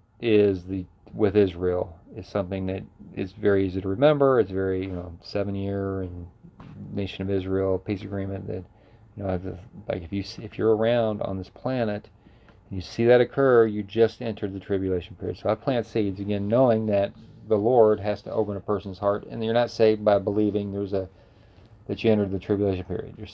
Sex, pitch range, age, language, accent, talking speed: male, 95-110 Hz, 40-59, English, American, 200 wpm